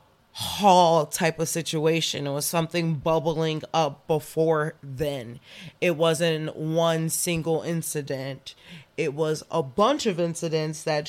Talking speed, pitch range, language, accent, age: 125 wpm, 145-170 Hz, English, American, 20-39